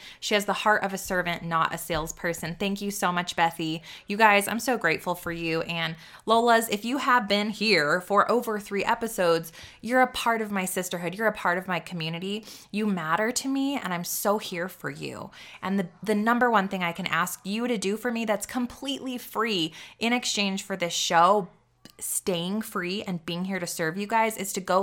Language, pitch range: English, 175-215 Hz